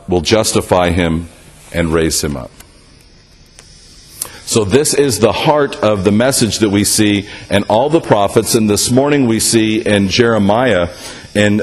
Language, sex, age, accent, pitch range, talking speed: English, male, 50-69, American, 105-125 Hz, 155 wpm